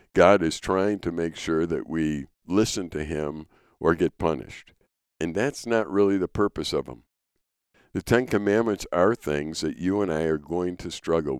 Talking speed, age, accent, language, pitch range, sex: 185 wpm, 60-79, American, English, 75-100 Hz, male